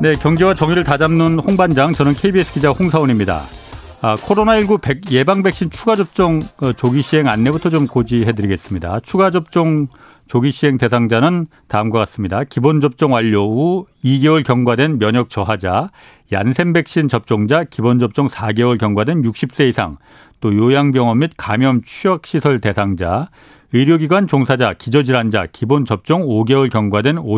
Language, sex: Korean, male